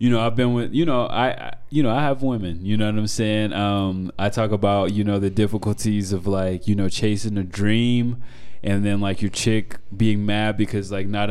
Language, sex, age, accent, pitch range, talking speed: English, male, 20-39, American, 100-115 Hz, 230 wpm